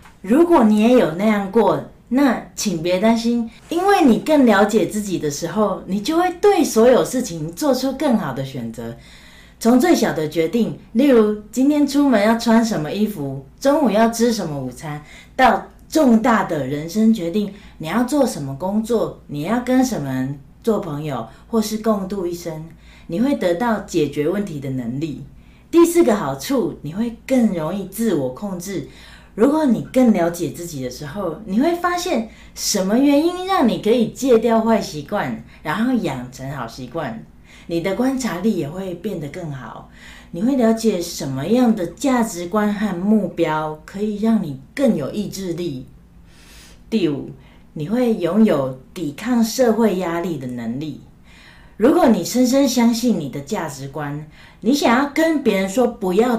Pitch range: 160-240 Hz